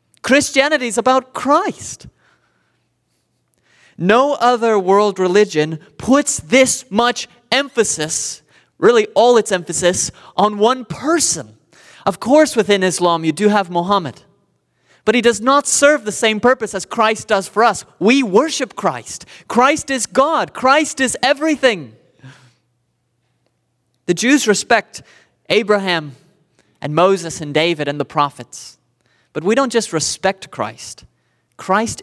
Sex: male